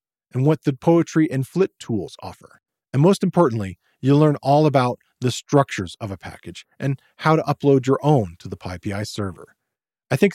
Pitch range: 110-150 Hz